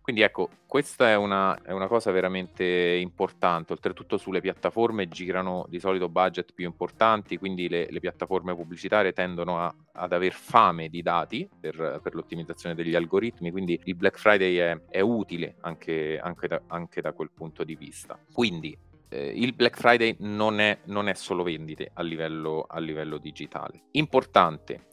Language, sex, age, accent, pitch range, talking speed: Italian, male, 30-49, native, 85-95 Hz, 150 wpm